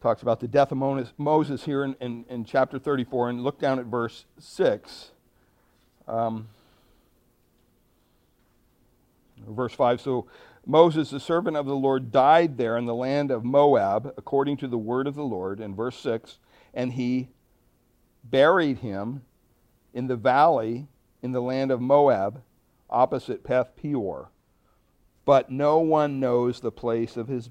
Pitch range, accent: 110-135 Hz, American